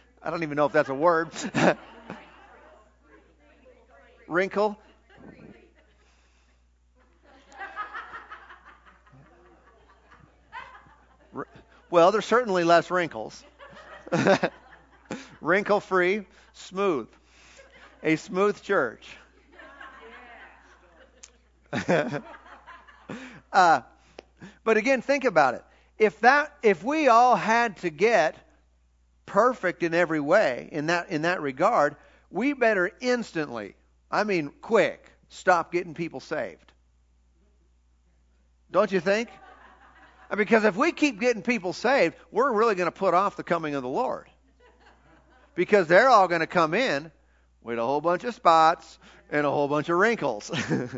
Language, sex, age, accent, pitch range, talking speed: English, male, 50-69, American, 145-215 Hz, 110 wpm